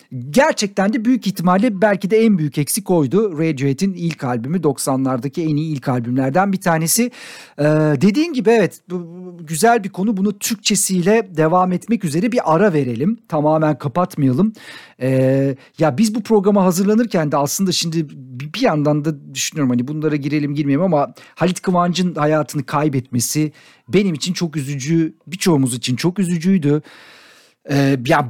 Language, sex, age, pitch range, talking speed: Turkish, male, 50-69, 145-190 Hz, 145 wpm